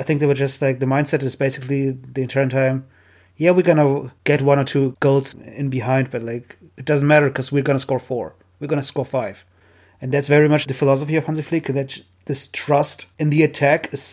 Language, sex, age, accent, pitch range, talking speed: English, male, 30-49, German, 130-150 Hz, 240 wpm